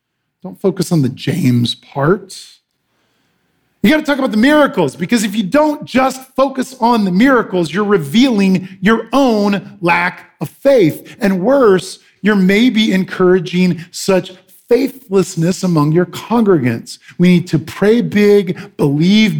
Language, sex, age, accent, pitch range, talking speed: English, male, 40-59, American, 155-210 Hz, 140 wpm